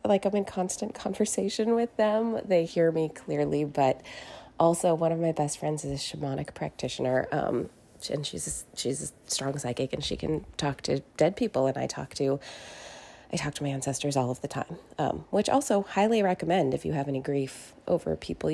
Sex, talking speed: female, 195 wpm